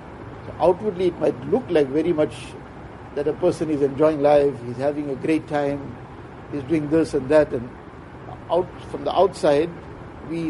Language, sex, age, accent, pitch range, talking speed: English, male, 60-79, Indian, 145-175 Hz, 170 wpm